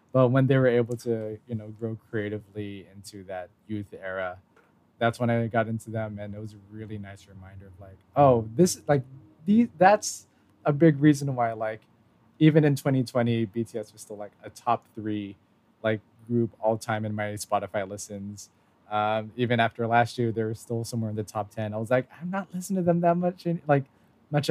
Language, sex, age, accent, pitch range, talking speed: English, male, 20-39, American, 105-120 Hz, 205 wpm